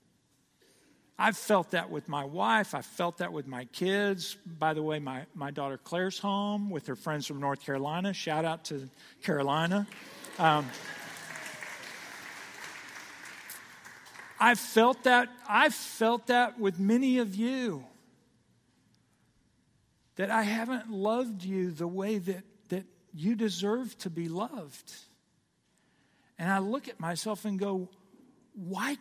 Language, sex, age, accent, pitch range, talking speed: English, male, 50-69, American, 145-200 Hz, 125 wpm